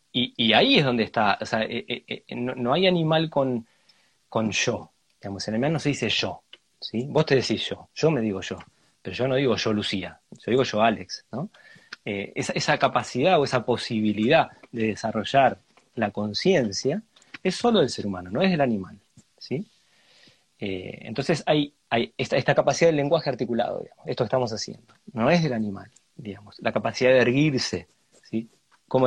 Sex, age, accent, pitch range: male, 30-49, Argentinian, 110-145 Hz